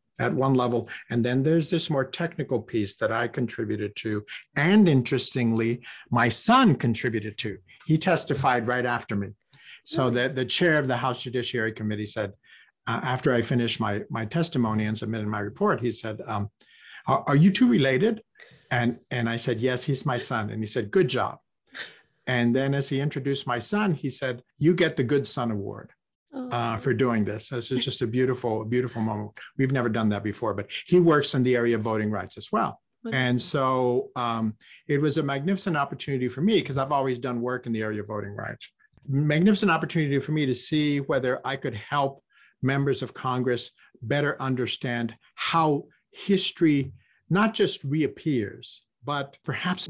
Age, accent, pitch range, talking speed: 50-69, American, 115-145 Hz, 185 wpm